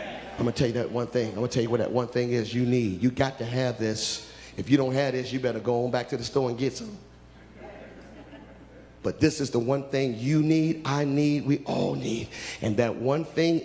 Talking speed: 255 wpm